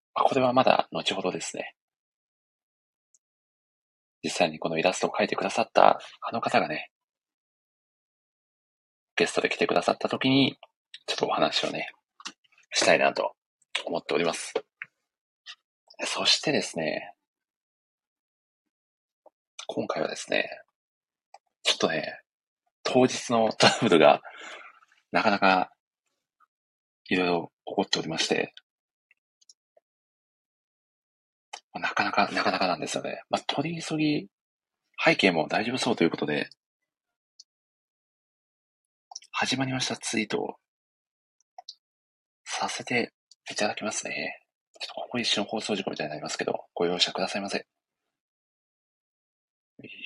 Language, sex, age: Japanese, male, 40-59